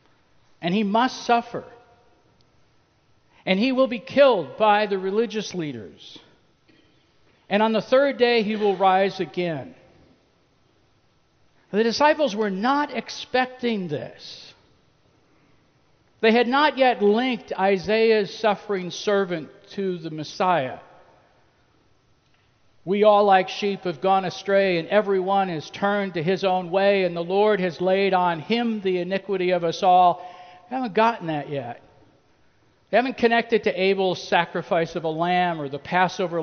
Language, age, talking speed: English, 60-79, 135 wpm